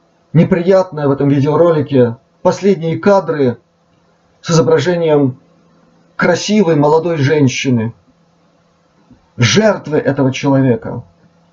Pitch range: 140-185 Hz